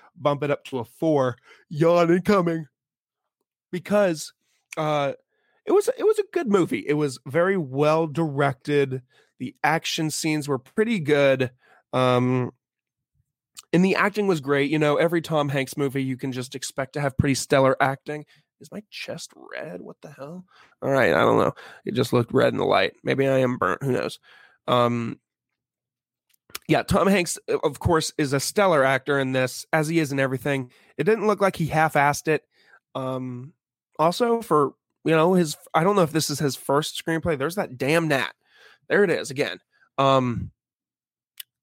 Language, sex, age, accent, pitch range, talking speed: English, male, 20-39, American, 135-185 Hz, 175 wpm